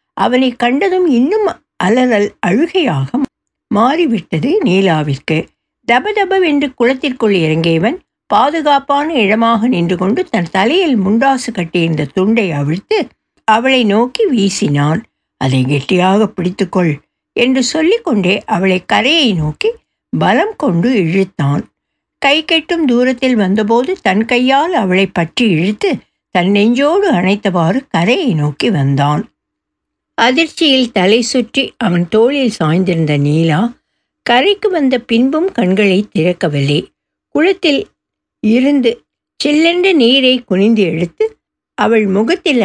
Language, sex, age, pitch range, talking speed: Tamil, female, 60-79, 190-275 Hz, 95 wpm